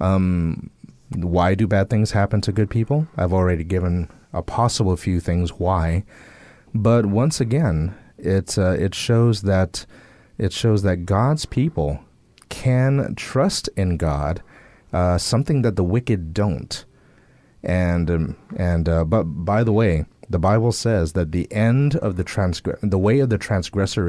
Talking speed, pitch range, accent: 155 wpm, 90-115 Hz, American